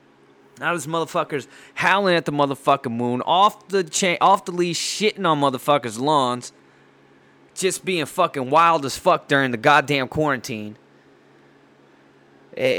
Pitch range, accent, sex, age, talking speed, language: 105-145 Hz, American, male, 20-39, 135 wpm, English